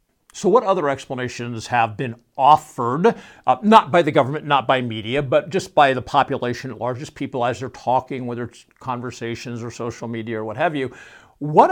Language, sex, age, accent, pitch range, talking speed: English, male, 60-79, American, 120-185 Hz, 190 wpm